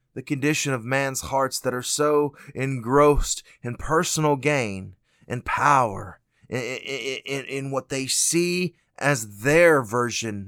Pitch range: 115-140 Hz